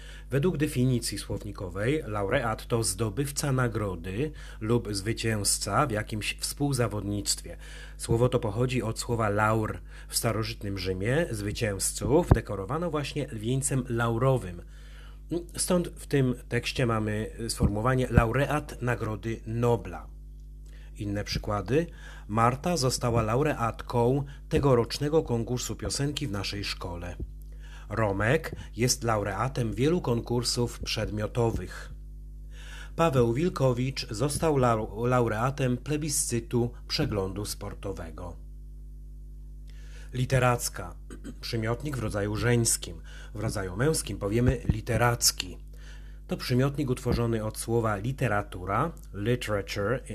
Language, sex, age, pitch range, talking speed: Polish, male, 30-49, 100-130 Hz, 90 wpm